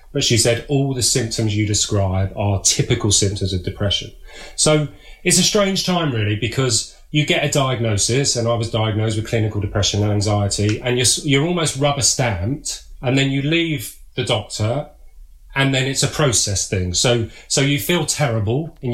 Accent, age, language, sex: British, 30-49, English, male